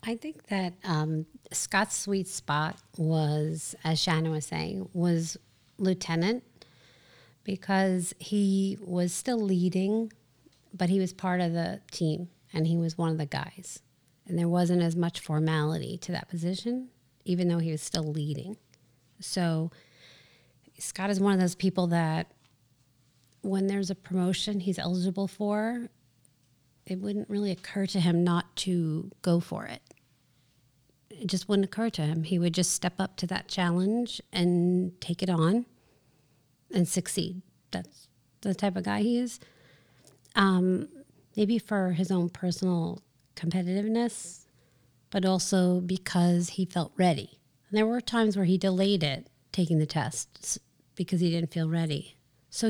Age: 30-49